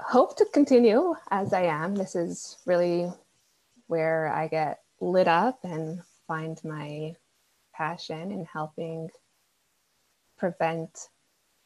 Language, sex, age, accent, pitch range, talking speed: English, female, 20-39, American, 165-195 Hz, 110 wpm